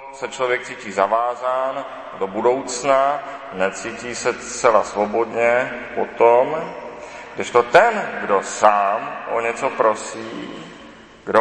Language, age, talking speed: Czech, 40-59, 110 wpm